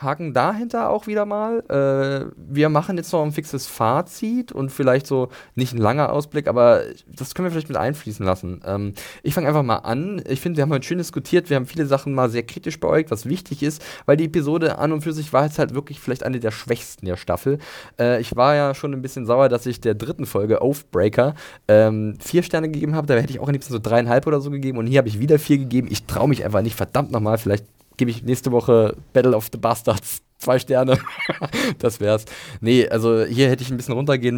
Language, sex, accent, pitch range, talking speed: German, male, German, 115-145 Hz, 235 wpm